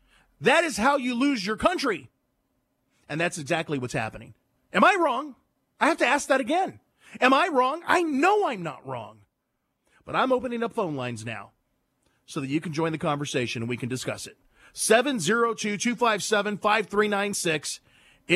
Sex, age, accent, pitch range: male, 40-59, American, 145-225 Hz